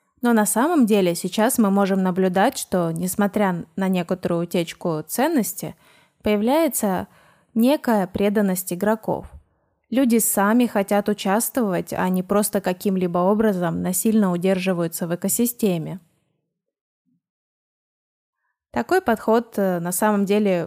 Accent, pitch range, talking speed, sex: native, 185-225 Hz, 105 wpm, female